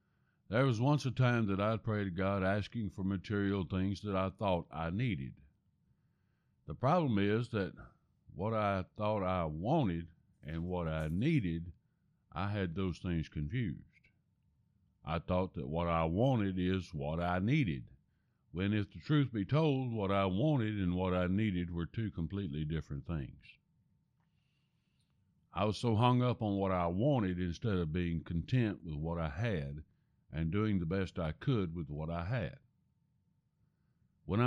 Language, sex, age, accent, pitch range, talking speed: English, male, 60-79, American, 85-110 Hz, 160 wpm